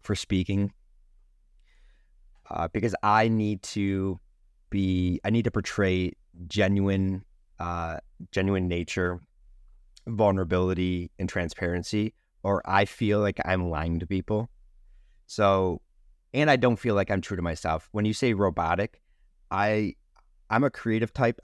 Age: 30-49